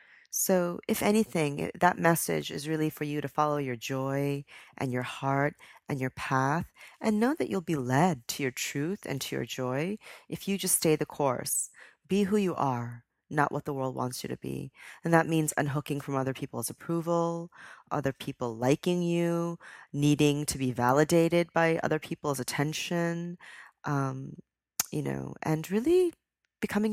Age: 40-59